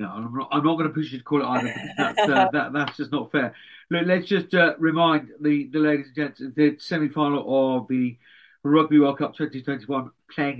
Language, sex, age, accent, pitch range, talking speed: English, male, 50-69, British, 120-150 Hz, 220 wpm